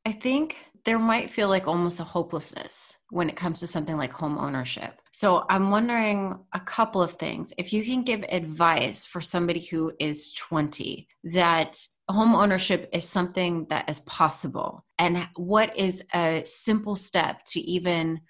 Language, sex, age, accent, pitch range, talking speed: English, female, 30-49, American, 155-185 Hz, 165 wpm